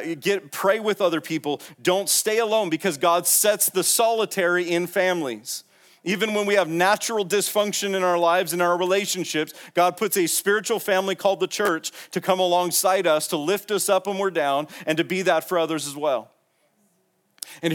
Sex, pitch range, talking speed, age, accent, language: male, 175-220 Hz, 185 wpm, 40-59, American, English